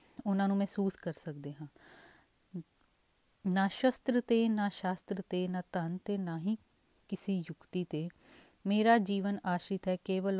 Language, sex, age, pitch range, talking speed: Punjabi, female, 30-49, 180-240 Hz, 135 wpm